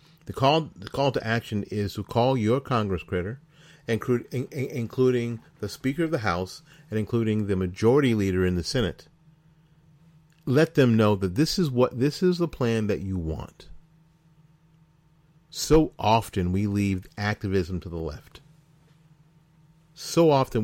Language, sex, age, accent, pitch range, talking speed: English, male, 40-59, American, 100-155 Hz, 145 wpm